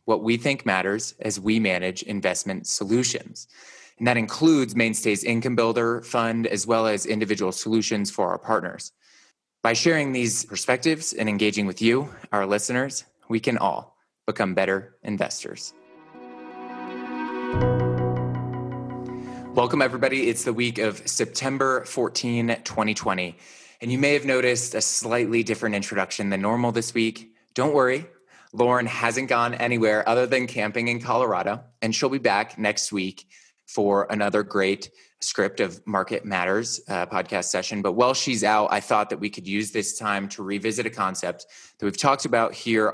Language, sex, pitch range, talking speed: English, male, 100-125 Hz, 155 wpm